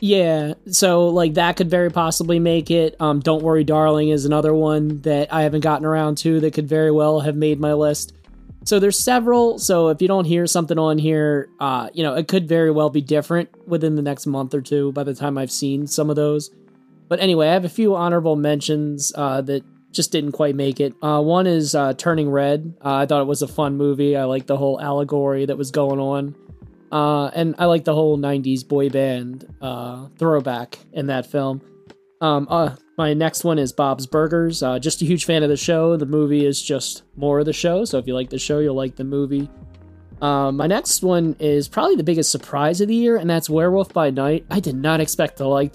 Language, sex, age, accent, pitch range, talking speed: English, male, 20-39, American, 140-165 Hz, 225 wpm